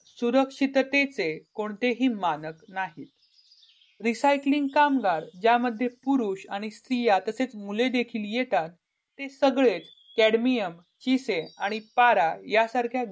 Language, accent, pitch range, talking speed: Marathi, native, 190-245 Hz, 95 wpm